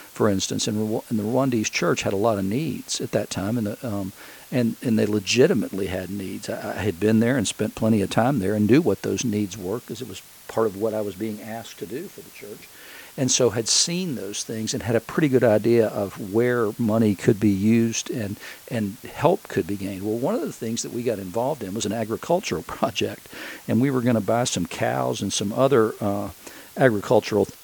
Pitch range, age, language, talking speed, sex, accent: 105-125 Hz, 50-69, English, 235 wpm, male, American